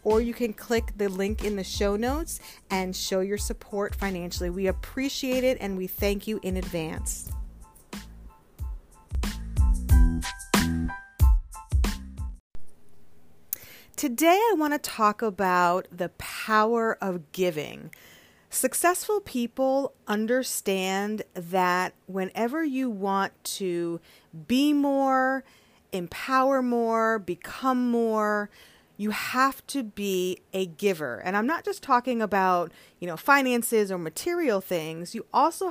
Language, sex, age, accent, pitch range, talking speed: English, female, 40-59, American, 180-240 Hz, 115 wpm